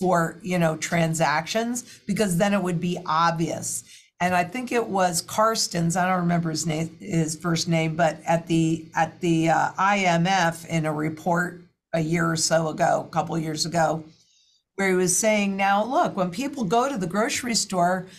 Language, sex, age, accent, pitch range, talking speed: English, female, 50-69, American, 170-210 Hz, 190 wpm